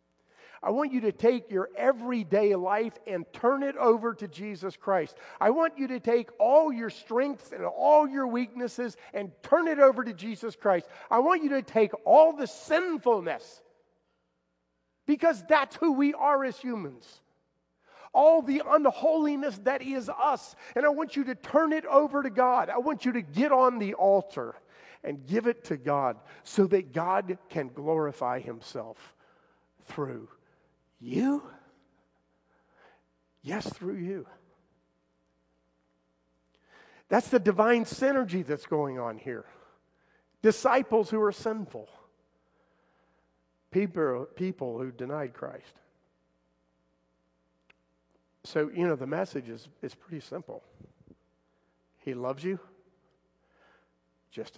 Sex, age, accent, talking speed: male, 50-69, American, 130 wpm